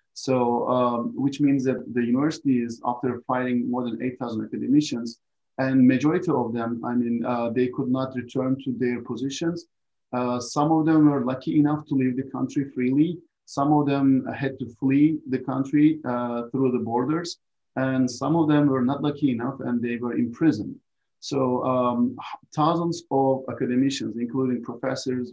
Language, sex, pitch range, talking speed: Turkish, male, 125-145 Hz, 170 wpm